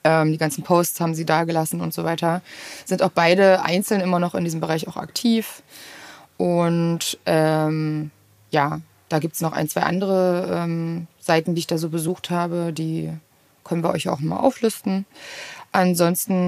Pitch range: 160-195 Hz